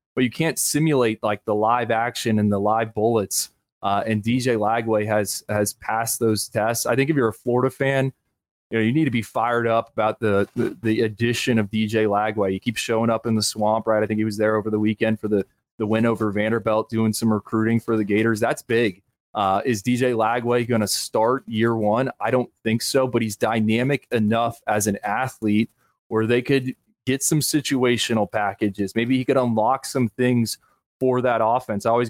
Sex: male